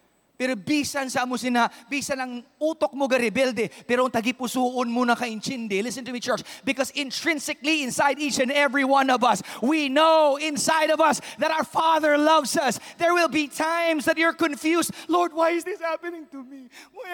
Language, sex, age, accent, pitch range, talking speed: English, male, 30-49, Filipino, 190-290 Hz, 135 wpm